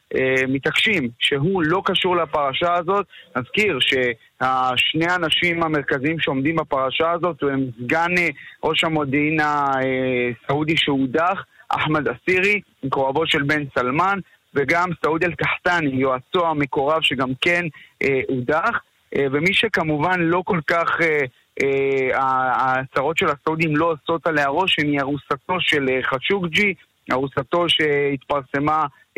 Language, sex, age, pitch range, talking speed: Hebrew, male, 30-49, 140-175 Hz, 115 wpm